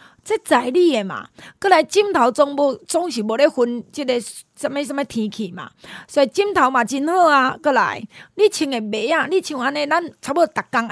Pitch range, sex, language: 230-320 Hz, female, Chinese